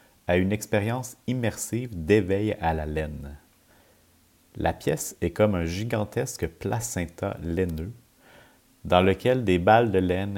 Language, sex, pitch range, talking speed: French, male, 85-105 Hz, 125 wpm